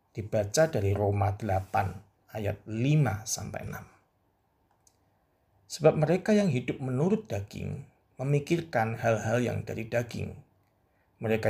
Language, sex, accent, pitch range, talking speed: Indonesian, male, native, 100-125 Hz, 95 wpm